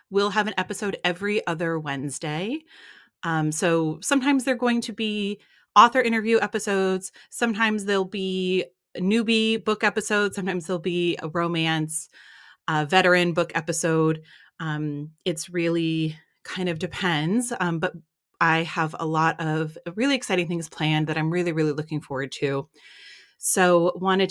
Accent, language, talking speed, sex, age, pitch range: American, English, 145 wpm, female, 30-49, 160-205 Hz